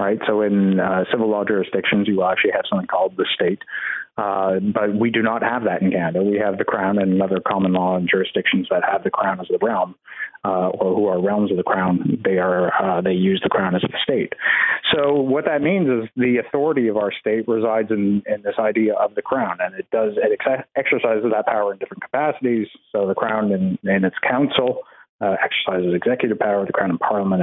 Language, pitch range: English, 95-125 Hz